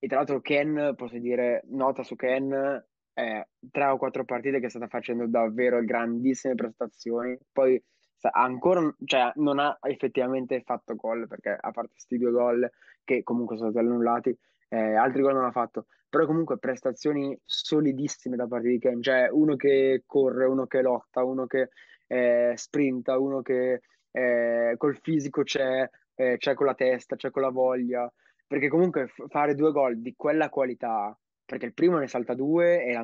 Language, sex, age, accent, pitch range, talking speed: Italian, male, 20-39, native, 120-135 Hz, 175 wpm